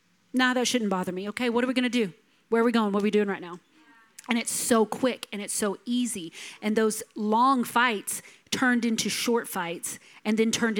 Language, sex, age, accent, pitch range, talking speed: English, female, 40-59, American, 210-250 Hz, 230 wpm